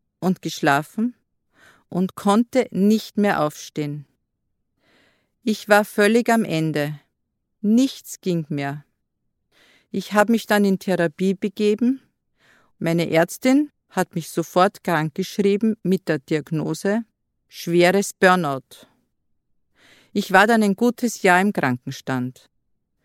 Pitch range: 150-210 Hz